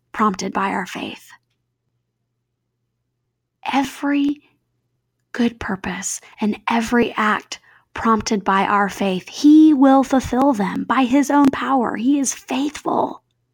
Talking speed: 110 wpm